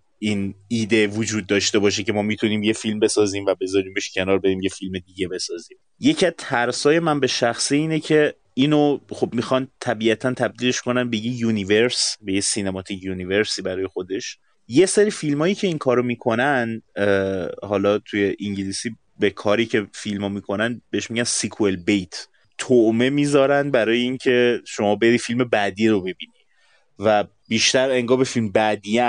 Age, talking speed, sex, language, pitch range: 30-49, 160 wpm, male, Persian, 95-120 Hz